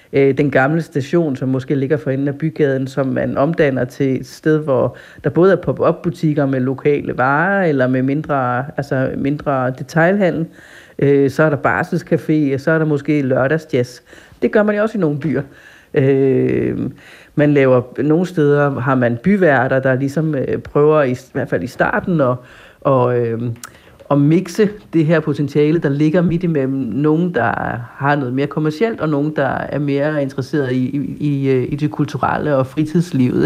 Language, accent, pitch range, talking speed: Danish, native, 135-165 Hz, 170 wpm